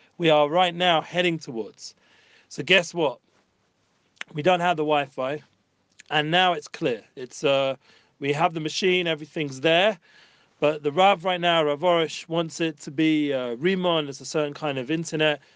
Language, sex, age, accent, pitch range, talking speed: English, male, 40-59, British, 145-170 Hz, 175 wpm